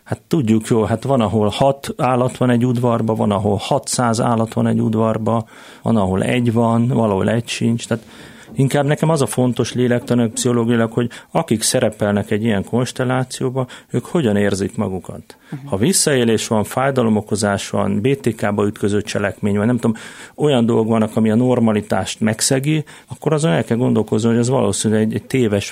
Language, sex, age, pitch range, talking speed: Hungarian, male, 40-59, 105-125 Hz, 170 wpm